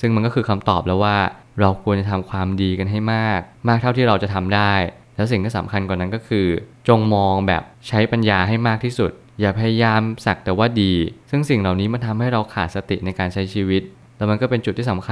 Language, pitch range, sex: Thai, 95-115 Hz, male